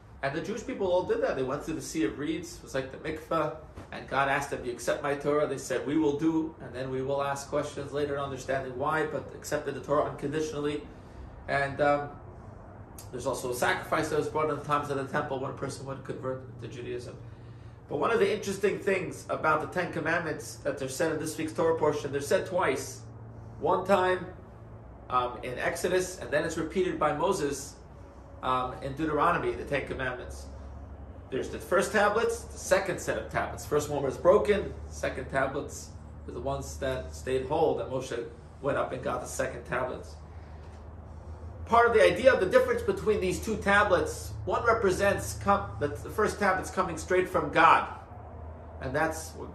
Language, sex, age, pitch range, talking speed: English, male, 40-59, 115-155 Hz, 195 wpm